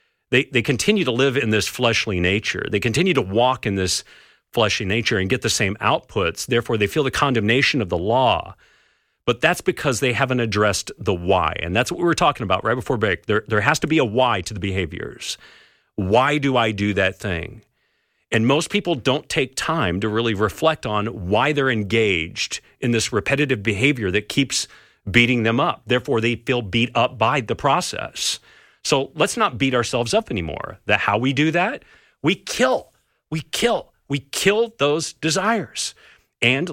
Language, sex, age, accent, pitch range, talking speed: English, male, 40-59, American, 105-140 Hz, 190 wpm